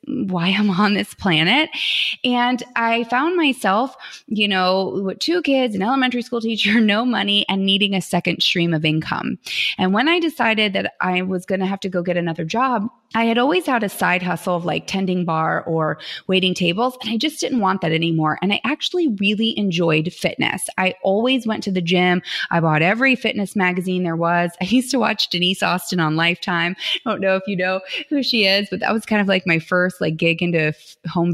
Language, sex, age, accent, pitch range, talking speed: English, female, 20-39, American, 180-240 Hz, 215 wpm